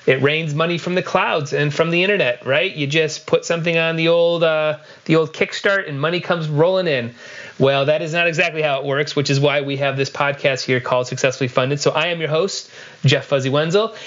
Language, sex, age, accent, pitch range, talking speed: English, male, 30-49, American, 145-185 Hz, 230 wpm